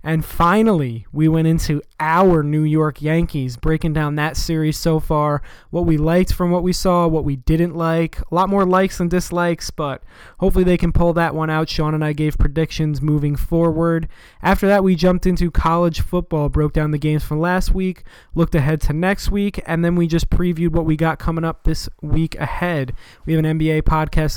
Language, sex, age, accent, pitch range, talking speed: English, male, 20-39, American, 150-175 Hz, 205 wpm